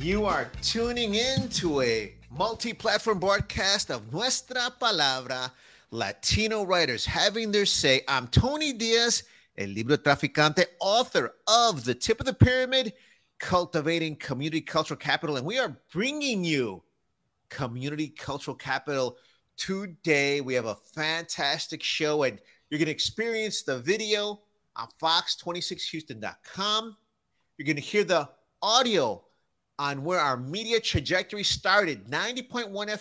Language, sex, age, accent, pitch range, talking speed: English, male, 30-49, American, 135-215 Hz, 125 wpm